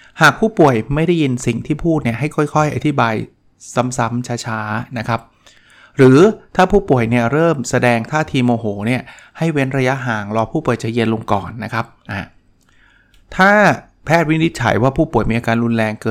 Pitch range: 115-145 Hz